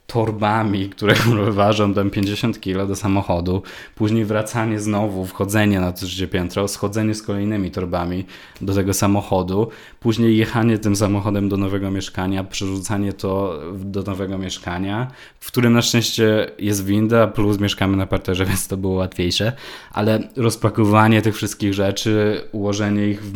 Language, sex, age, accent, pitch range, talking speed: Polish, male, 20-39, native, 95-110 Hz, 145 wpm